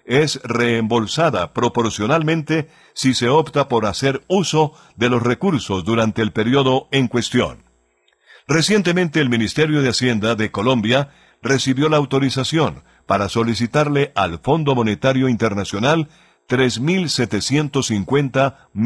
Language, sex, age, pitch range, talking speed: Spanish, male, 50-69, 115-150 Hz, 110 wpm